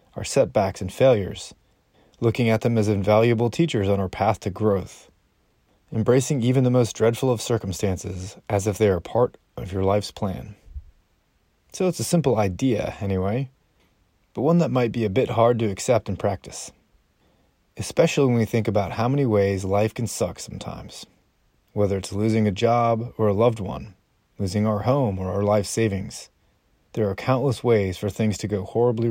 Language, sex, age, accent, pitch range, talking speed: English, male, 30-49, American, 100-125 Hz, 175 wpm